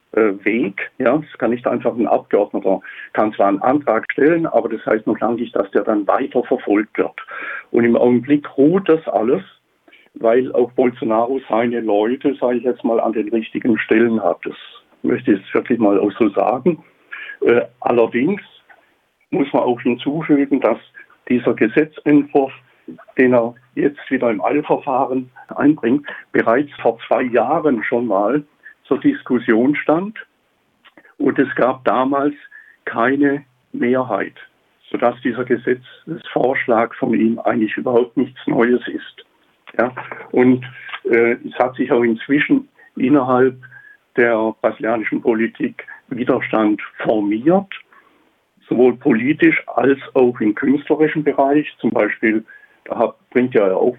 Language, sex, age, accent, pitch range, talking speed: German, male, 60-79, German, 120-150 Hz, 135 wpm